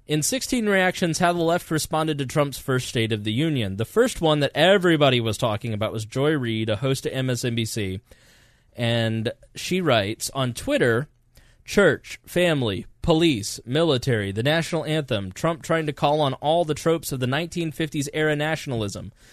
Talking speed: 165 wpm